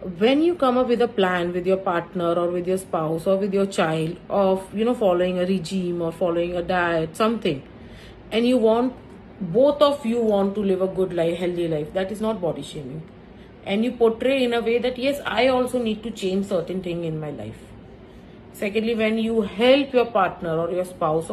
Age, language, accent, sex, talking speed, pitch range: 40-59, English, Indian, female, 210 wpm, 175-230 Hz